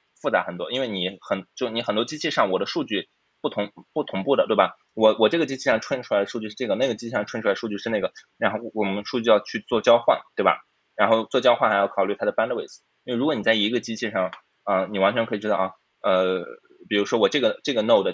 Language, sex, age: Chinese, male, 20-39